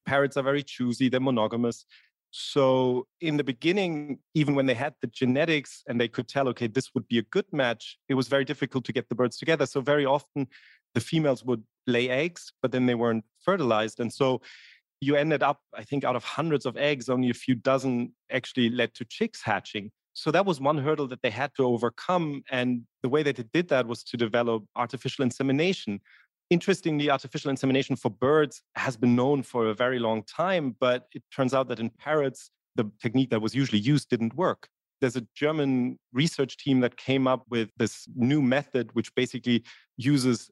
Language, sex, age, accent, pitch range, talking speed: English, male, 30-49, German, 120-140 Hz, 200 wpm